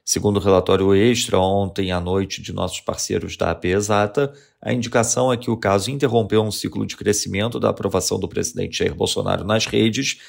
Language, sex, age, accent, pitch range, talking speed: Portuguese, male, 40-59, Brazilian, 100-120 Hz, 185 wpm